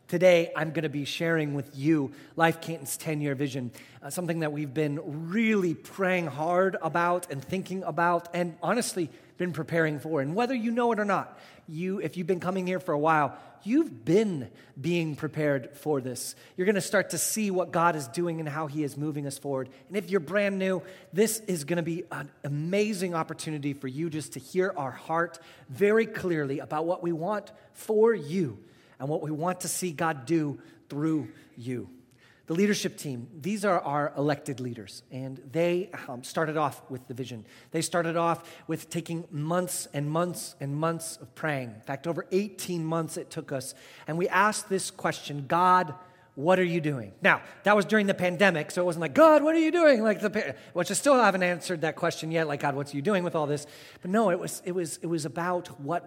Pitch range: 145-185 Hz